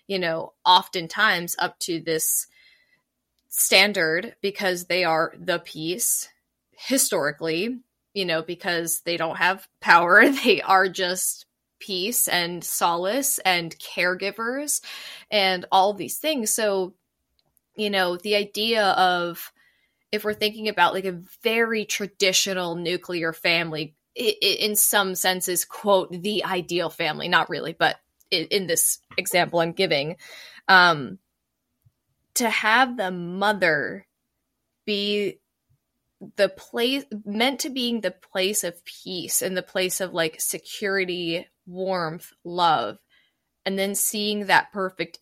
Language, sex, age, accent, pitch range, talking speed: English, female, 20-39, American, 175-205 Hz, 120 wpm